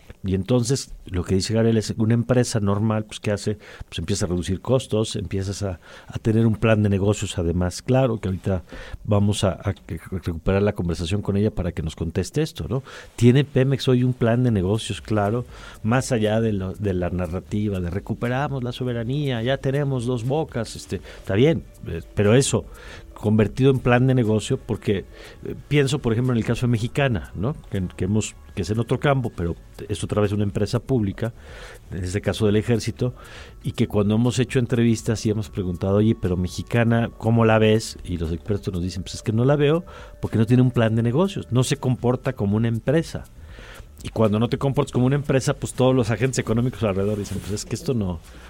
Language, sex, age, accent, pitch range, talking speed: Spanish, male, 50-69, Mexican, 100-125 Hz, 205 wpm